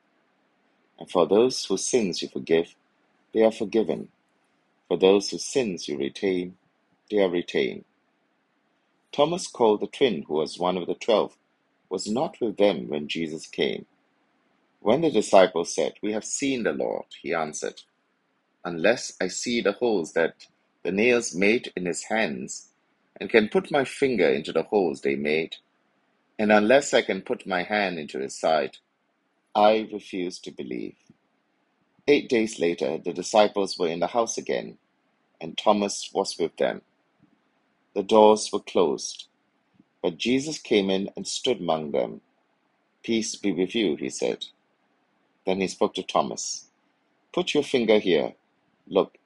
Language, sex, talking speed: English, male, 155 wpm